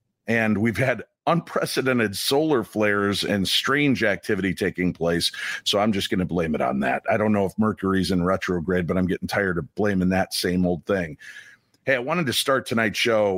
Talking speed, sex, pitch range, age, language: 195 wpm, male, 95-125 Hz, 50-69, English